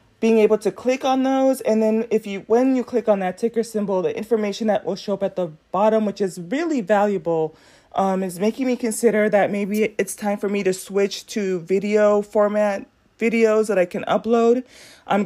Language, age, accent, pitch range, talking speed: English, 30-49, American, 200-245 Hz, 205 wpm